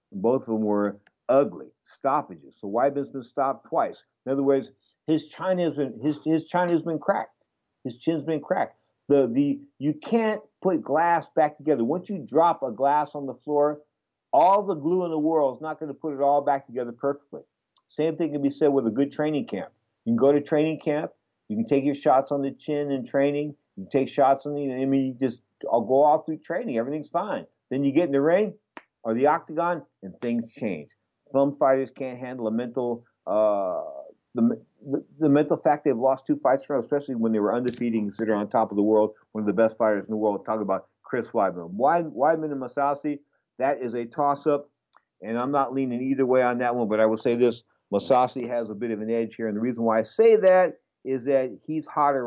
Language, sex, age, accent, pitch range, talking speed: English, male, 50-69, American, 115-155 Hz, 220 wpm